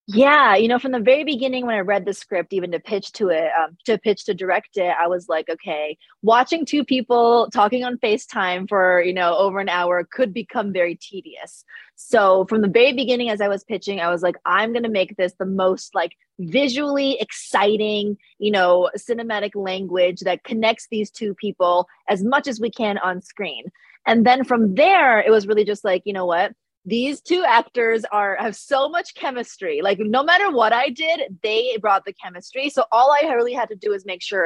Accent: American